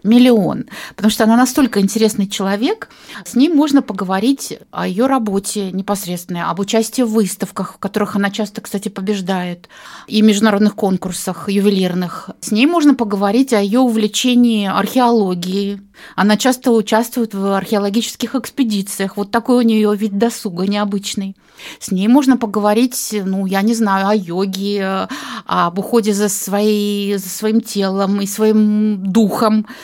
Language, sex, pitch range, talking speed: Russian, female, 200-245 Hz, 140 wpm